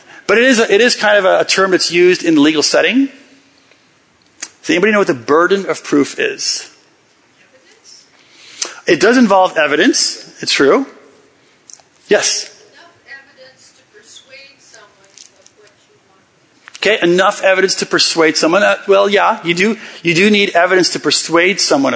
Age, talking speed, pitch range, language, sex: 40-59, 150 wpm, 170-275 Hz, English, male